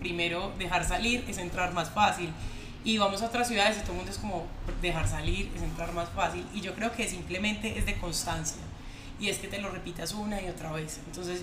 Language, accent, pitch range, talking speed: Spanish, Colombian, 170-210 Hz, 225 wpm